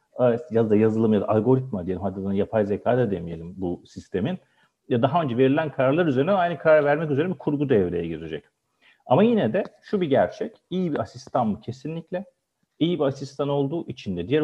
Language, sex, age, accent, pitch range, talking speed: Turkish, male, 40-59, native, 115-155 Hz, 190 wpm